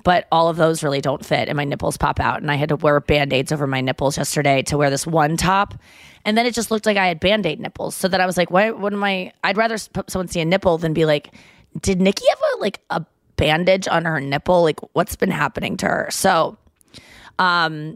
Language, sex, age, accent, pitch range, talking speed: English, female, 20-39, American, 160-200 Hz, 240 wpm